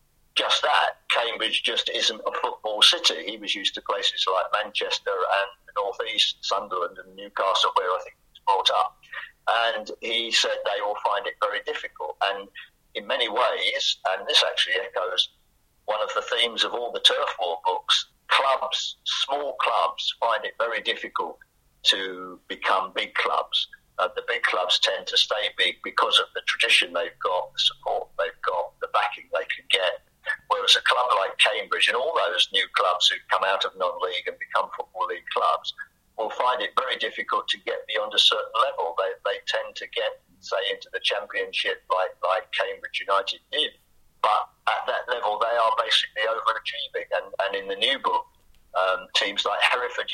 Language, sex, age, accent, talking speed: English, male, 50-69, British, 185 wpm